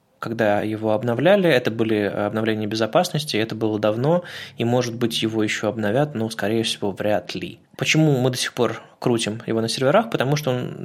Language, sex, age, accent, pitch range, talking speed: Russian, male, 20-39, native, 110-130 Hz, 185 wpm